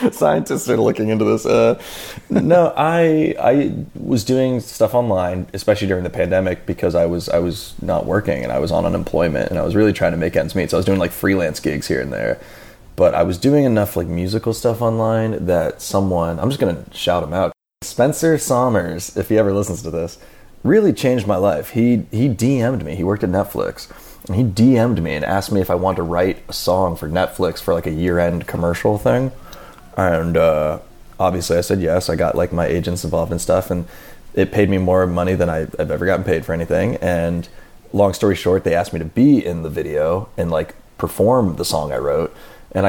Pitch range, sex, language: 90-110 Hz, male, English